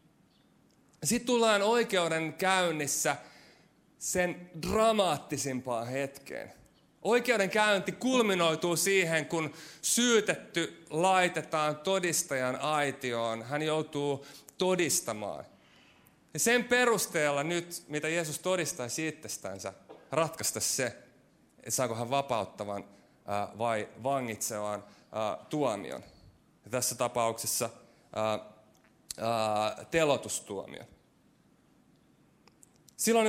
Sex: male